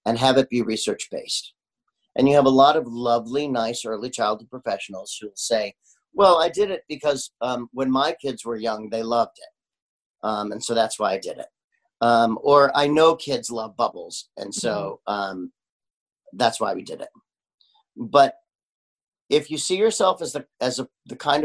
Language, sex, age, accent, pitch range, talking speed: English, male, 40-59, American, 115-145 Hz, 185 wpm